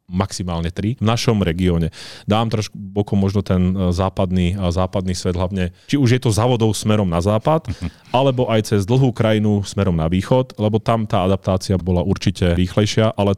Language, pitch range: Slovak, 95-115 Hz